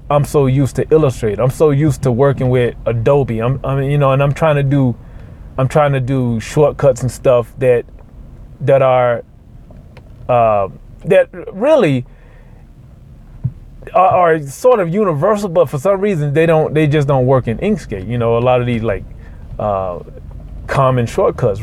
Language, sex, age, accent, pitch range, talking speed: English, male, 30-49, American, 120-155 Hz, 170 wpm